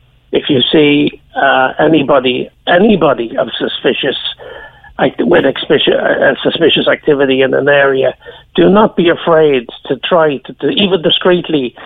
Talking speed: 130 wpm